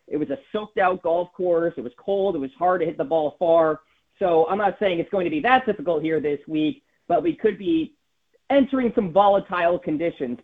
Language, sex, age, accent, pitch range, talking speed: English, male, 40-59, American, 155-200 Hz, 220 wpm